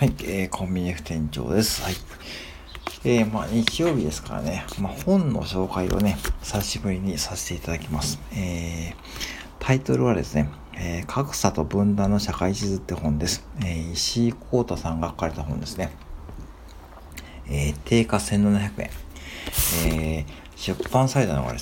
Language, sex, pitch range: Japanese, male, 75-100 Hz